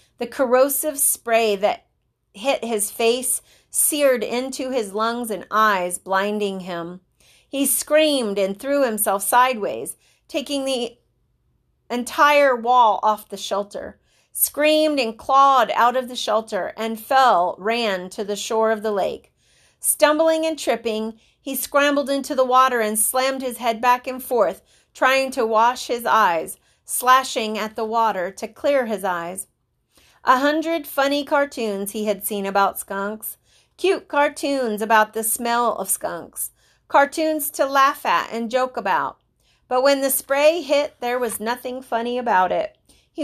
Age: 40-59